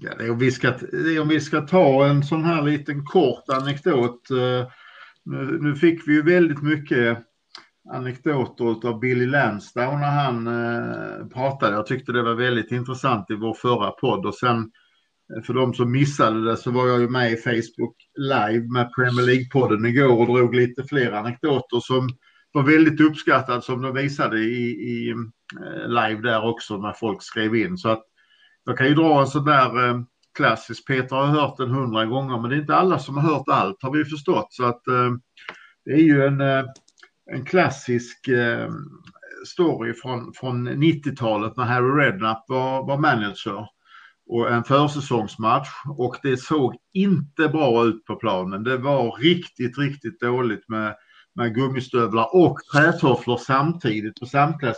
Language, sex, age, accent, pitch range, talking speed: Swedish, male, 50-69, Norwegian, 120-145 Hz, 165 wpm